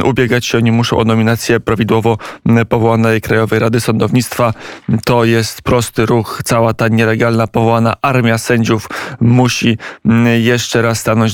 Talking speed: 130 wpm